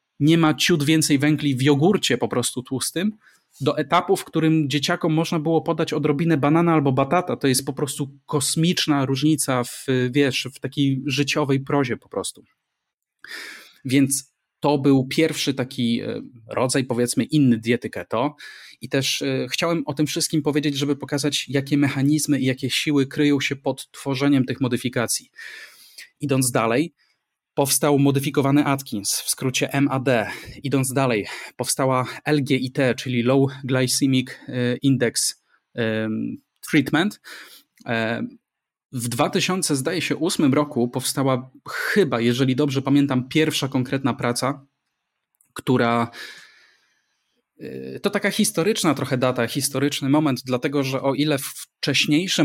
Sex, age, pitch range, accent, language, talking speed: male, 30-49, 130-150 Hz, native, Polish, 120 wpm